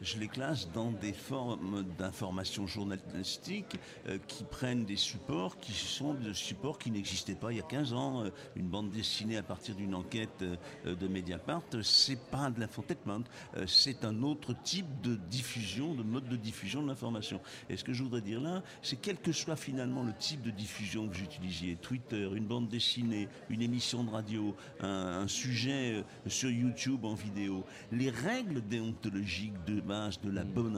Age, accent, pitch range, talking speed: 60-79, French, 105-135 Hz, 180 wpm